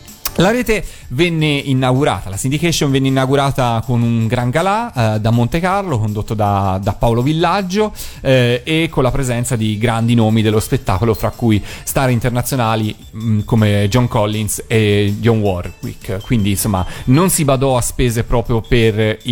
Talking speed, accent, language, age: 155 wpm, native, Italian, 30-49